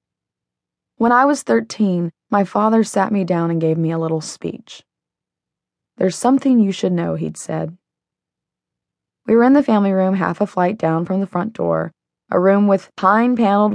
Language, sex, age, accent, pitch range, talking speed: English, female, 20-39, American, 165-215 Hz, 175 wpm